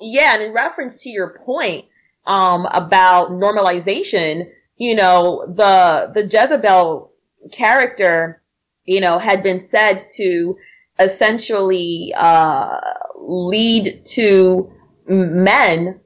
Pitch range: 180-220 Hz